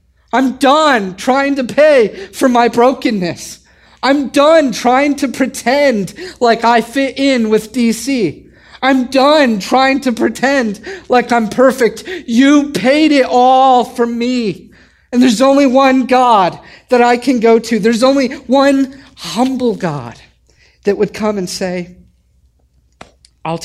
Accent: American